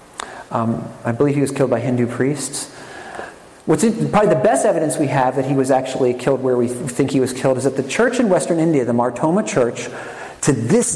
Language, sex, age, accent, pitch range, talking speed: English, male, 40-59, American, 120-165 Hz, 220 wpm